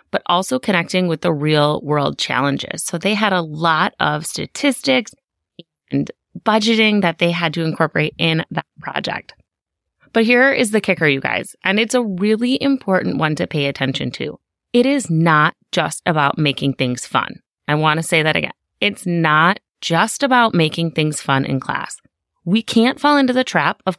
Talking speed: 180 wpm